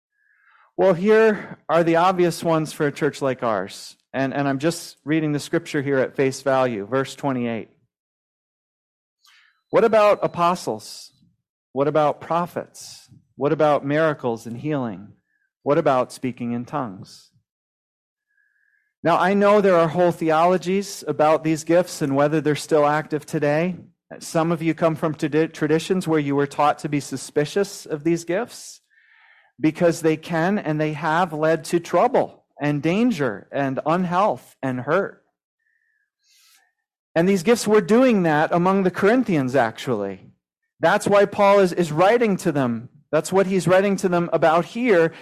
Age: 40-59